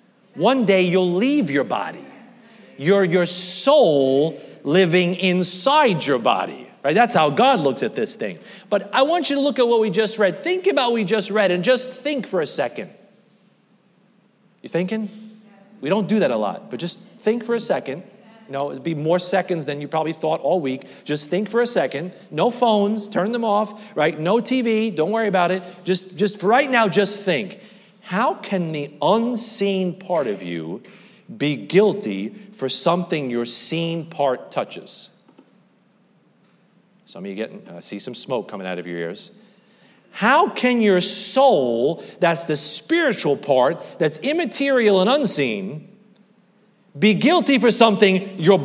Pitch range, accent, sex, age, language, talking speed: 175-215 Hz, American, male, 40-59, English, 170 wpm